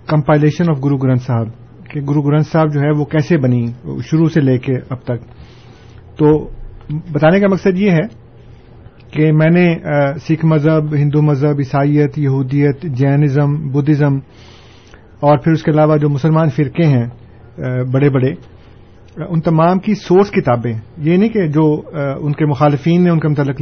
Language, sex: Urdu, male